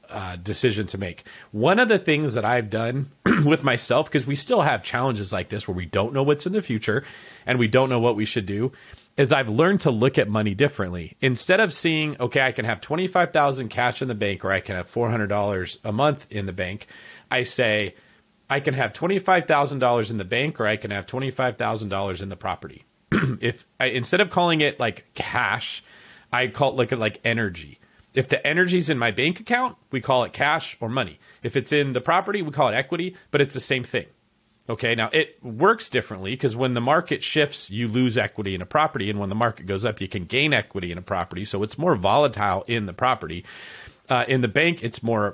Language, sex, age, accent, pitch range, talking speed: English, male, 30-49, American, 105-140 Hz, 220 wpm